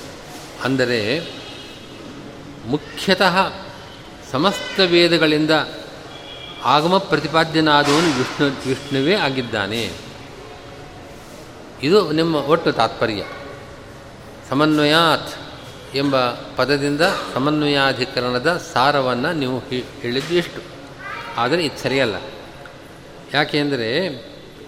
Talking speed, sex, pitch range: 55 wpm, male, 135-165 Hz